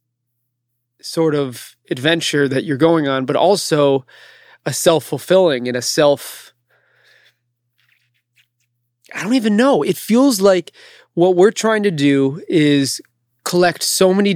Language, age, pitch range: English, 30-49, 130-165 Hz